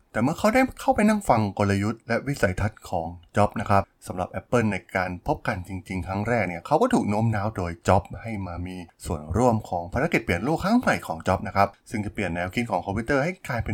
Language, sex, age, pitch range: Thai, male, 20-39, 95-120 Hz